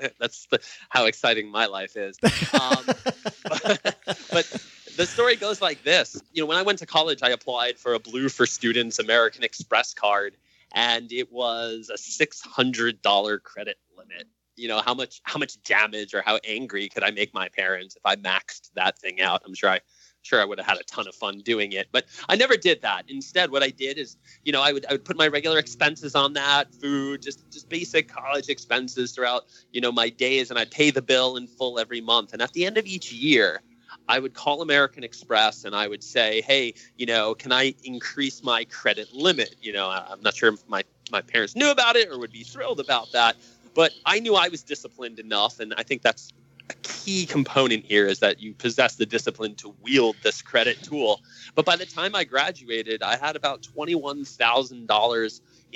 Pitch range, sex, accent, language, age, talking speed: 115-160 Hz, male, American, English, 20-39, 210 wpm